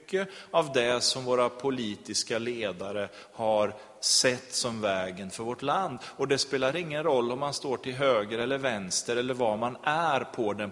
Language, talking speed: Swedish, 175 wpm